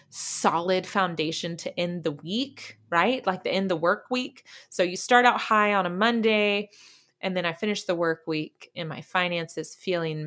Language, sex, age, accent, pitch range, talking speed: English, female, 20-39, American, 165-210 Hz, 195 wpm